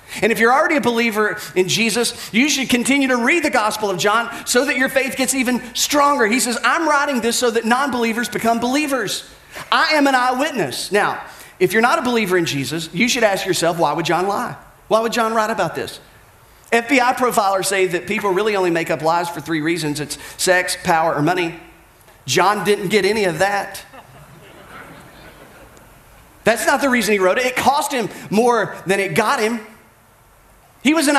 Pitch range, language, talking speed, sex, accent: 165-245 Hz, English, 195 wpm, male, American